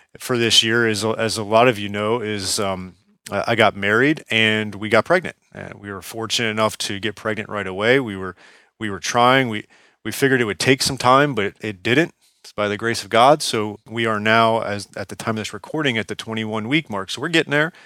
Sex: male